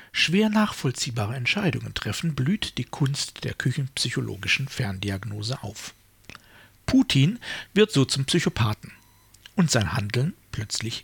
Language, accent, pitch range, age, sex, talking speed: German, German, 110-155 Hz, 60-79, male, 110 wpm